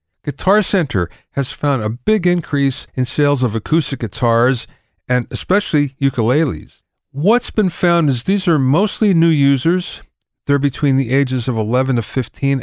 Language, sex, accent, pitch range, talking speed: English, male, American, 115-150 Hz, 150 wpm